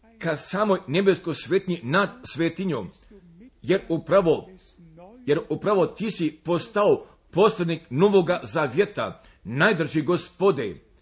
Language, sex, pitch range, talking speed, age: Croatian, male, 155-200 Hz, 95 wpm, 50-69